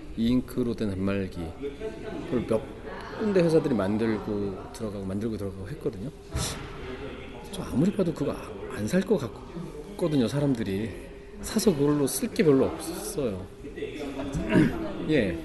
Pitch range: 105-145 Hz